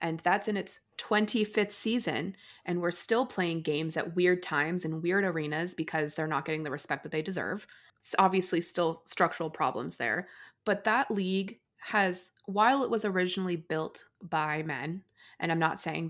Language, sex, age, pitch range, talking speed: English, female, 20-39, 165-200 Hz, 175 wpm